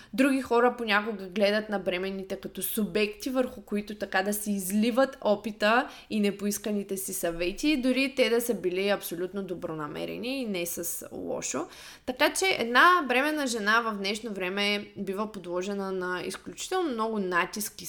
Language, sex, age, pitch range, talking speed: Bulgarian, female, 20-39, 195-255 Hz, 150 wpm